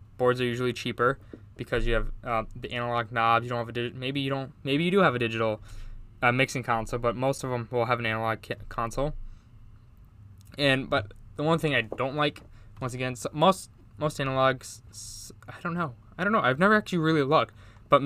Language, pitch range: English, 110-135 Hz